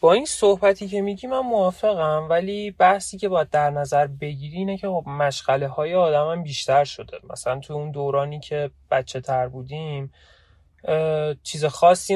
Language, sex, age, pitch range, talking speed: Persian, male, 30-49, 135-175 Hz, 160 wpm